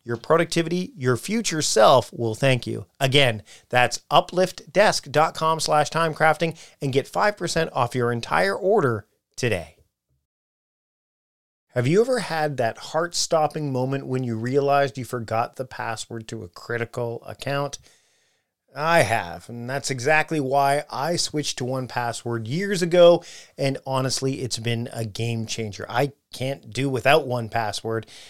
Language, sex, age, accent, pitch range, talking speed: English, male, 40-59, American, 115-155 Hz, 135 wpm